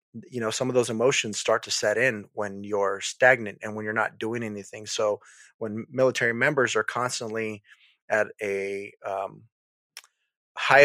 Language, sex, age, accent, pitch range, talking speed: English, male, 30-49, American, 105-130 Hz, 160 wpm